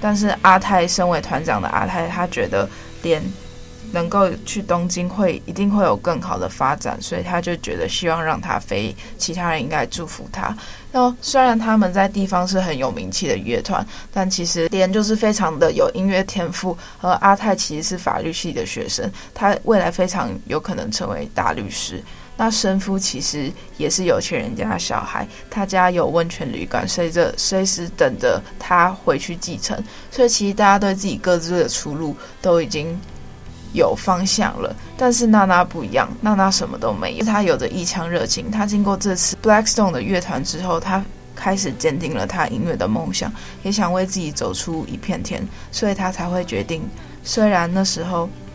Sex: female